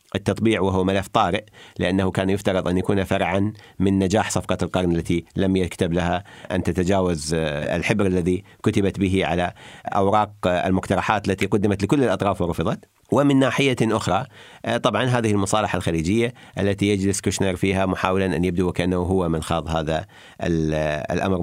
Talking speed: 145 wpm